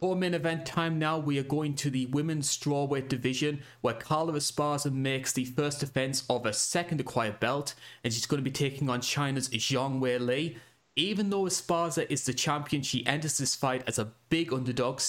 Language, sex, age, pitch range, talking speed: English, male, 20-39, 125-155 Hz, 195 wpm